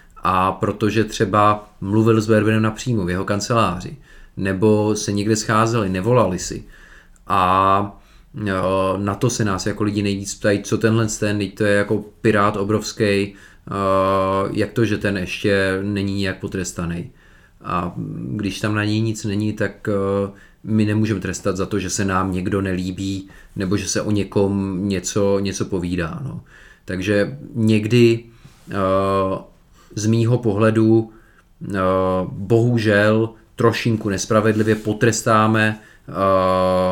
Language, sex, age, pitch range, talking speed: Czech, male, 30-49, 100-115 Hz, 125 wpm